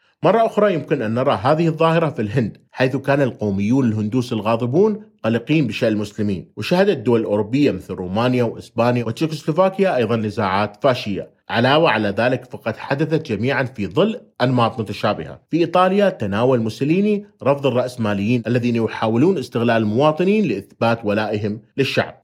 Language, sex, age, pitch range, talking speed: Arabic, male, 30-49, 110-145 Hz, 135 wpm